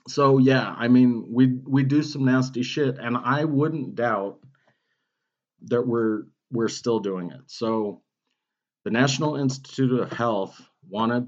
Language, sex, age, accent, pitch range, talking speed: English, male, 40-59, American, 95-130 Hz, 145 wpm